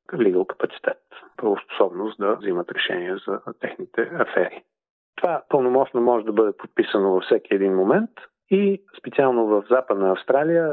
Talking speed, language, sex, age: 135 wpm, Bulgarian, male, 40-59